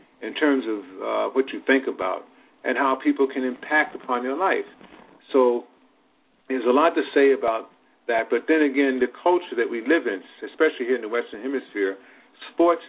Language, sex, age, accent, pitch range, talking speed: English, male, 50-69, American, 110-145 Hz, 185 wpm